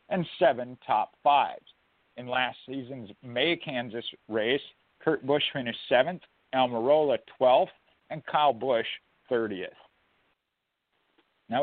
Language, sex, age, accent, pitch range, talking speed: English, male, 50-69, American, 125-155 Hz, 110 wpm